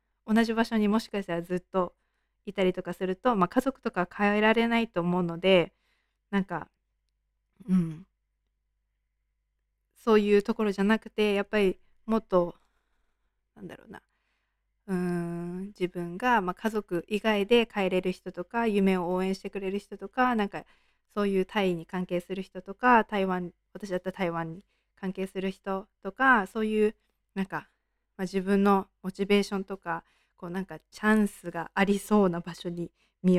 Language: Japanese